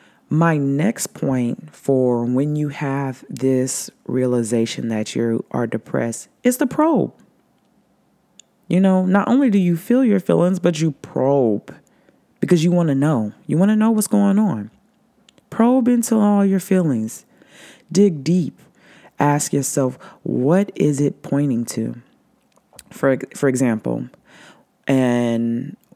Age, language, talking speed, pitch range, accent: 20-39, English, 135 wpm, 115-180 Hz, American